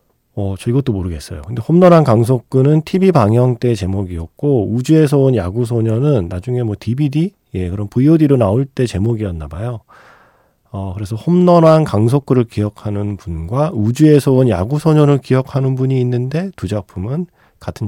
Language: Korean